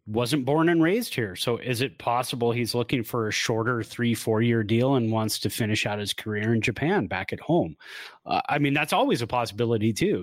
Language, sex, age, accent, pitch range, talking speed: English, male, 30-49, American, 105-140 Hz, 225 wpm